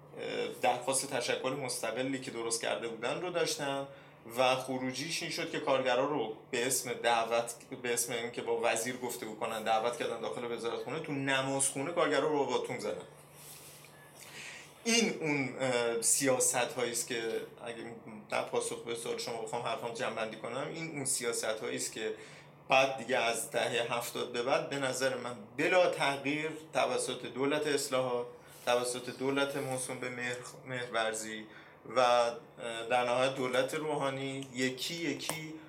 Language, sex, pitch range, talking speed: Persian, male, 120-150 Hz, 145 wpm